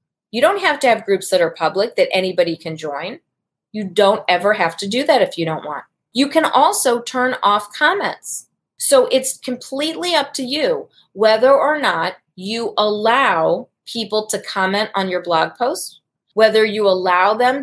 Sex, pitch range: female, 185-235 Hz